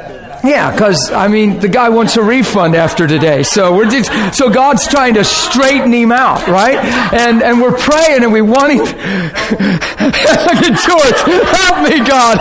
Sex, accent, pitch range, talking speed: male, American, 230-295 Hz, 180 wpm